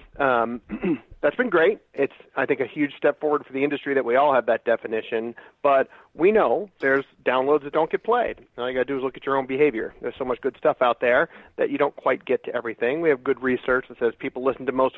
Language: English